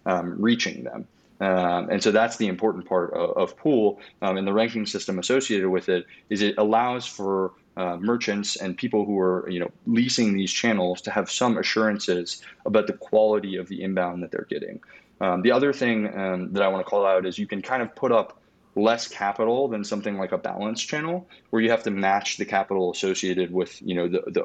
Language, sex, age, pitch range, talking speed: English, male, 20-39, 90-110 Hz, 215 wpm